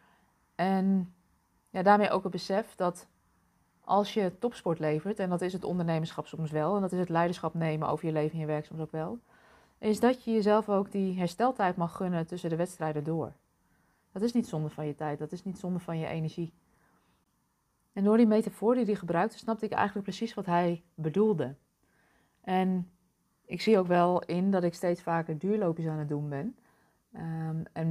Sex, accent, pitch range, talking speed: female, Dutch, 160-195 Hz, 195 wpm